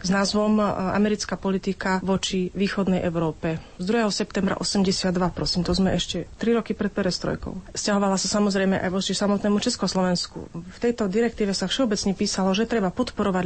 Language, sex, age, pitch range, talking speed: Slovak, female, 30-49, 185-210 Hz, 155 wpm